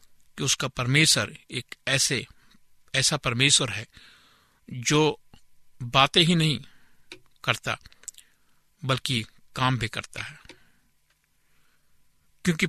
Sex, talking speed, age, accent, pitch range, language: male, 90 wpm, 60-79, native, 120-155 Hz, Hindi